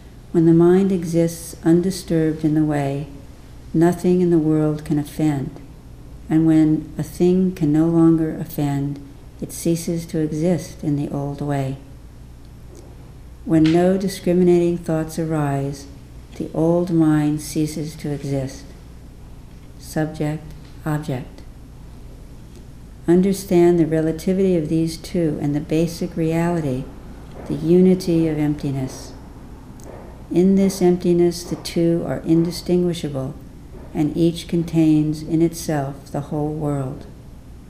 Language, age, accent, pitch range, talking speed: English, 60-79, American, 145-170 Hz, 115 wpm